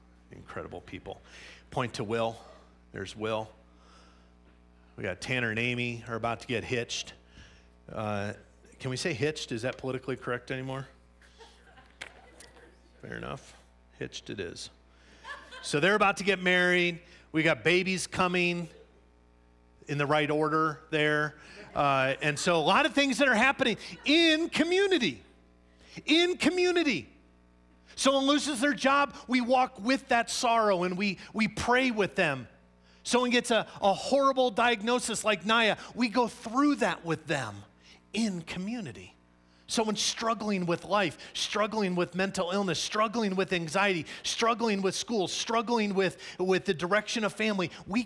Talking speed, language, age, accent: 140 wpm, English, 40-59, American